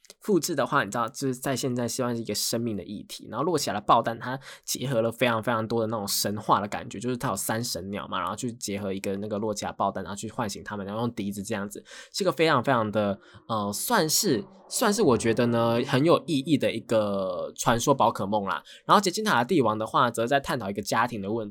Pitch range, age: 105-140 Hz, 10-29